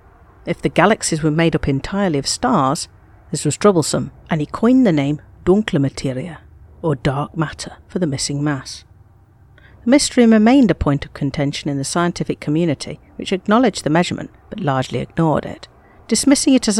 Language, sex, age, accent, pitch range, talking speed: English, female, 50-69, British, 140-195 Hz, 170 wpm